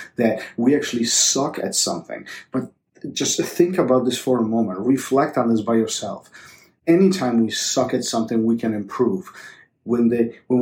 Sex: male